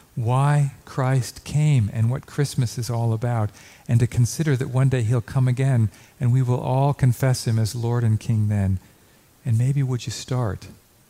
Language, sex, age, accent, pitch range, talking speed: English, male, 50-69, American, 105-130 Hz, 185 wpm